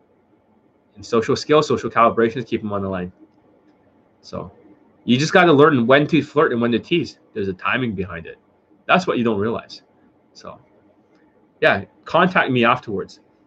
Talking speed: 170 wpm